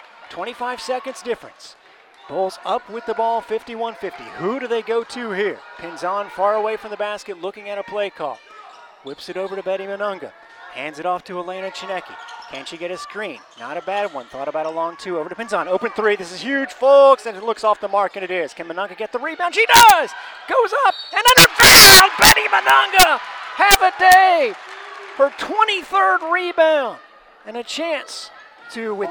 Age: 30-49